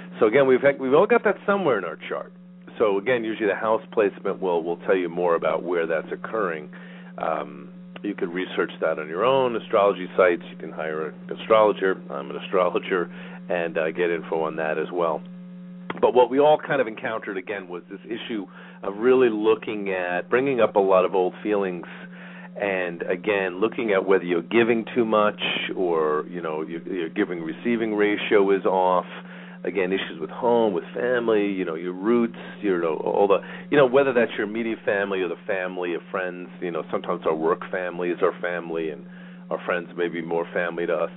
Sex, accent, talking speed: male, American, 200 wpm